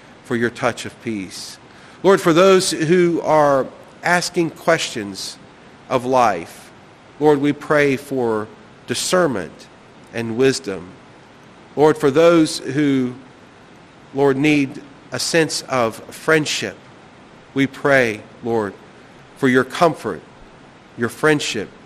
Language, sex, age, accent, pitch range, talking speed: English, male, 40-59, American, 120-150 Hz, 105 wpm